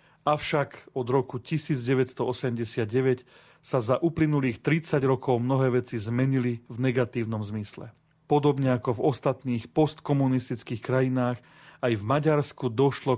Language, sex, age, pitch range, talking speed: Slovak, male, 40-59, 115-135 Hz, 115 wpm